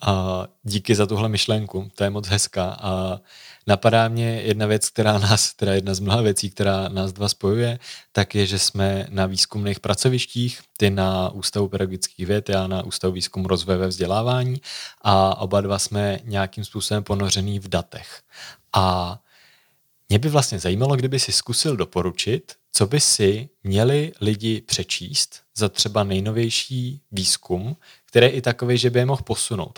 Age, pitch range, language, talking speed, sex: 30-49, 100-120 Hz, Czech, 160 wpm, male